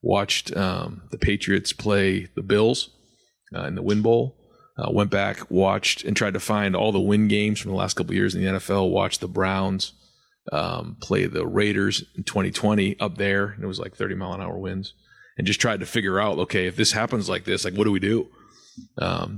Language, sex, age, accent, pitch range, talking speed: English, male, 30-49, American, 100-110 Hz, 210 wpm